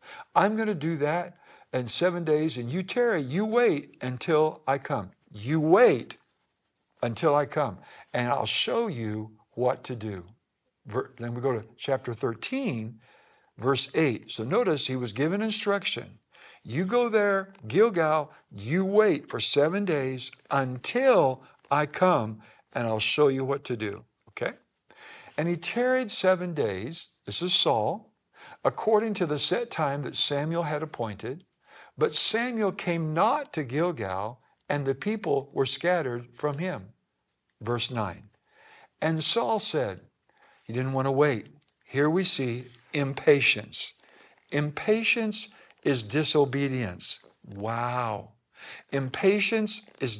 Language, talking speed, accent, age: English, 135 wpm, American, 60-79